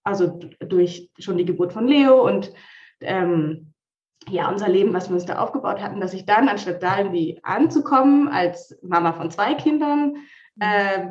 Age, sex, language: 20-39, female, English